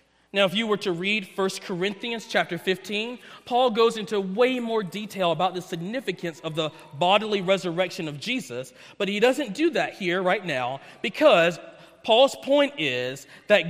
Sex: male